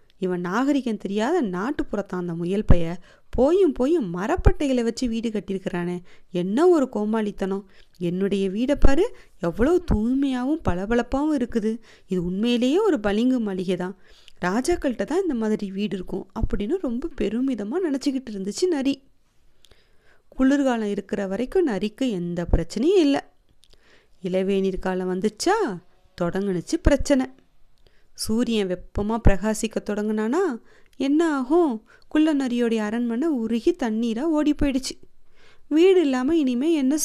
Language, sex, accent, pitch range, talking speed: English, female, Indian, 200-295 Hz, 95 wpm